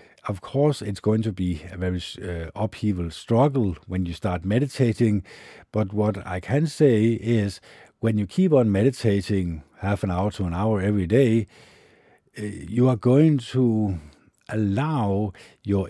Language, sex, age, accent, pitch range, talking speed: English, male, 60-79, Danish, 90-115 Hz, 150 wpm